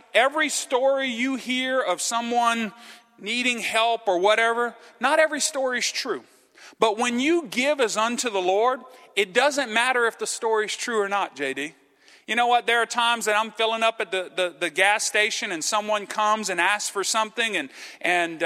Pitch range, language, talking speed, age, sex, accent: 195-265 Hz, English, 190 wpm, 40-59, male, American